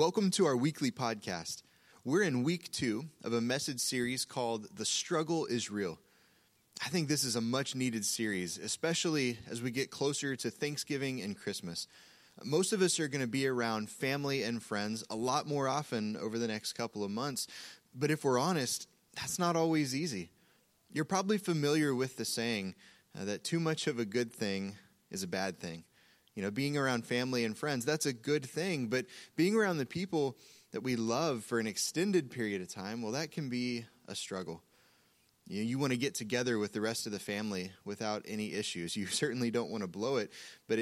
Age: 20-39